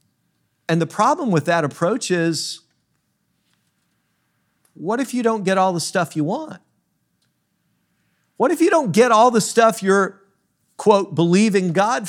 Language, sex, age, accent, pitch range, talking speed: English, male, 50-69, American, 180-225 Hz, 145 wpm